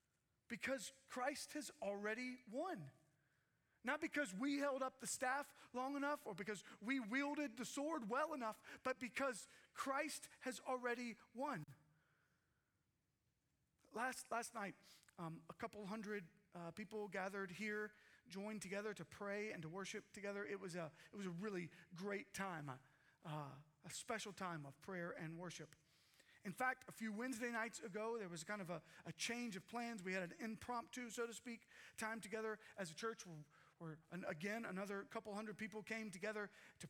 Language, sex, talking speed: English, male, 160 wpm